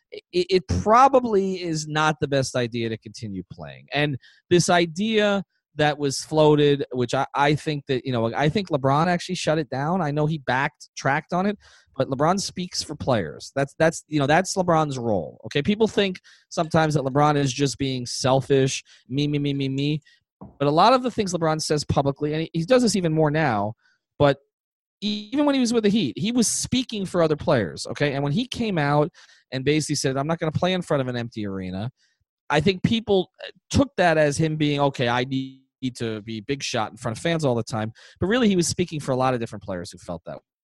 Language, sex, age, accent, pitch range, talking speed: English, male, 30-49, American, 135-180 Hz, 225 wpm